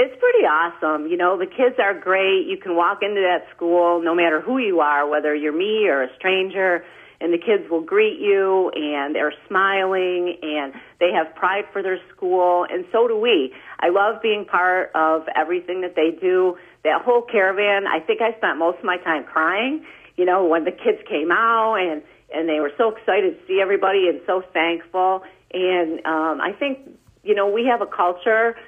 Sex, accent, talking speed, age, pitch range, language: female, American, 200 wpm, 40-59, 165-215 Hz, English